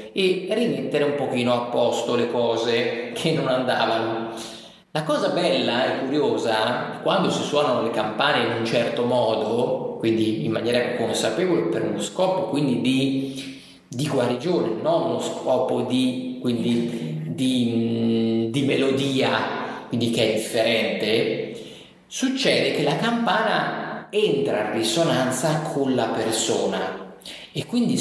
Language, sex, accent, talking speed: Italian, male, native, 125 wpm